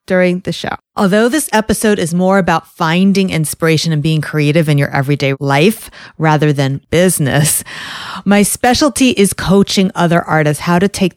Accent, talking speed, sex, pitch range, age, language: American, 160 wpm, female, 155-200 Hz, 30-49, English